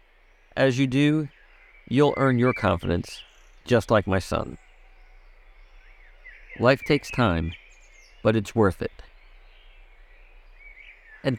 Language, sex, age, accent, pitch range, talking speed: English, male, 50-69, American, 105-130 Hz, 100 wpm